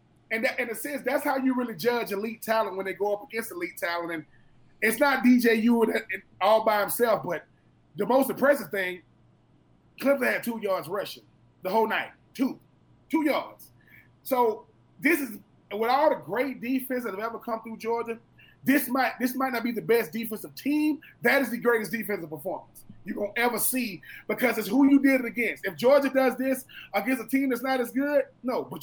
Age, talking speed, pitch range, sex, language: 20-39, 205 wpm, 215-260 Hz, male, English